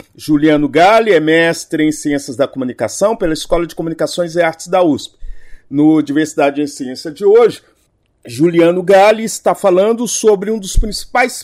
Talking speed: 155 wpm